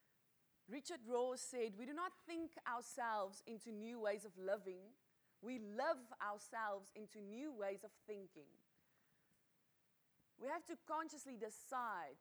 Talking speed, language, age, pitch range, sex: 130 wpm, English, 20-39, 200-260 Hz, female